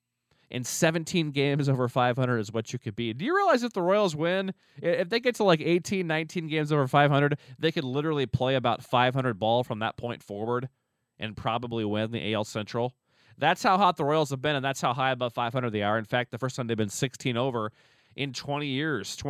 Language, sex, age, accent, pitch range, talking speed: English, male, 30-49, American, 115-145 Hz, 220 wpm